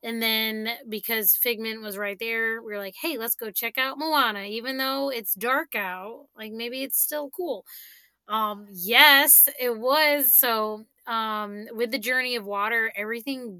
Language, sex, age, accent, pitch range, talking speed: English, female, 20-39, American, 200-245 Hz, 170 wpm